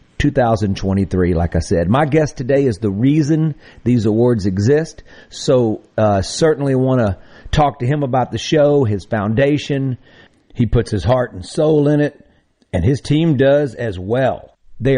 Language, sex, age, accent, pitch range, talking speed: English, male, 50-69, American, 110-140 Hz, 170 wpm